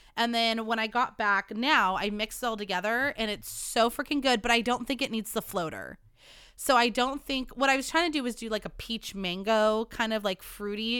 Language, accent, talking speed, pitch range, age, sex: English, American, 245 wpm, 200-250 Hz, 20-39, female